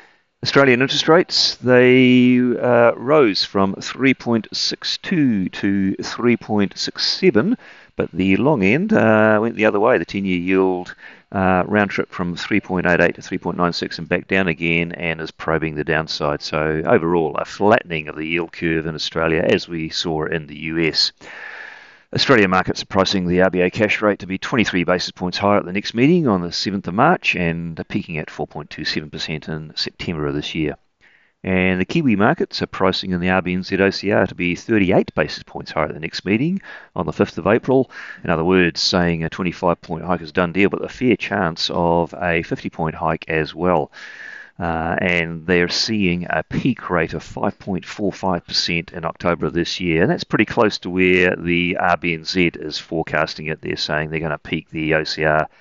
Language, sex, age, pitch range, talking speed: English, male, 40-59, 85-105 Hz, 180 wpm